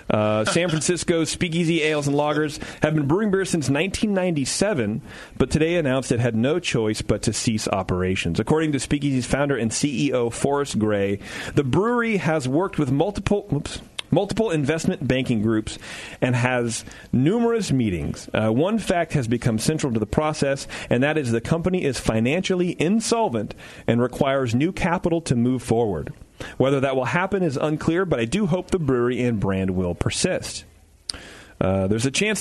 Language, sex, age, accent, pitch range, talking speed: English, male, 40-59, American, 115-170 Hz, 170 wpm